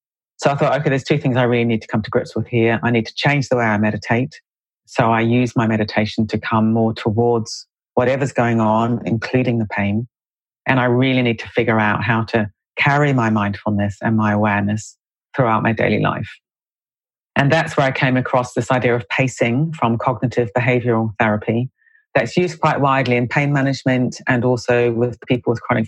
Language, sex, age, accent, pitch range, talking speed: English, female, 40-59, British, 115-135 Hz, 195 wpm